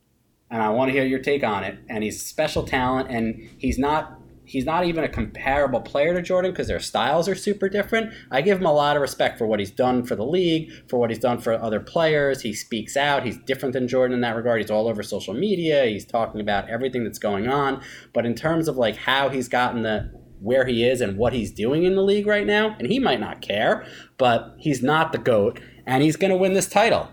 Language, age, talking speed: English, 30-49, 245 wpm